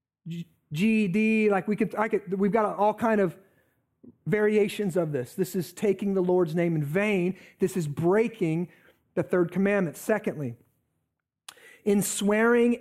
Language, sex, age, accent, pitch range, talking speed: English, male, 40-59, American, 155-220 Hz, 145 wpm